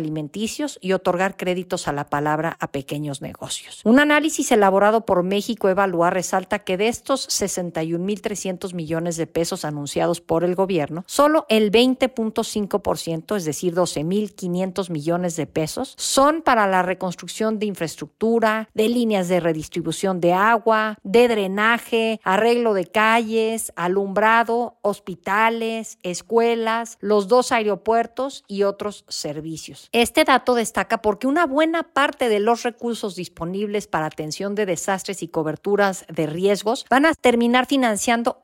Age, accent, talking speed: 50-69, Mexican, 135 wpm